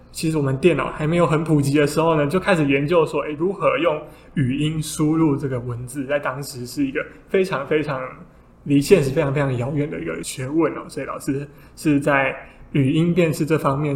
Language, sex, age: Chinese, male, 20-39